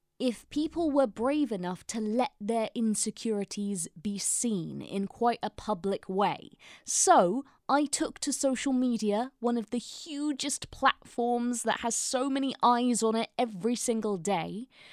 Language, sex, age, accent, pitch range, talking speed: English, female, 20-39, British, 205-260 Hz, 150 wpm